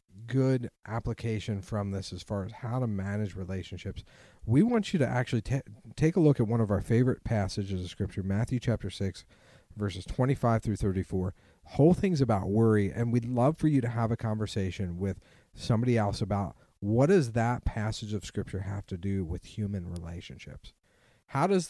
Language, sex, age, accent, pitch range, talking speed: English, male, 40-59, American, 95-115 Hz, 185 wpm